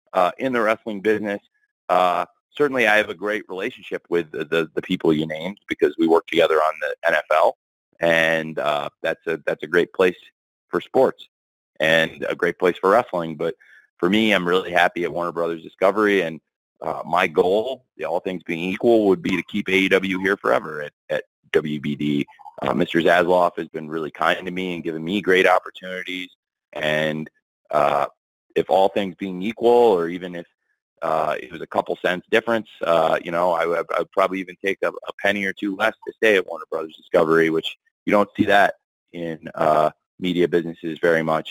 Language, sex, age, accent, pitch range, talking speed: English, male, 30-49, American, 80-100 Hz, 195 wpm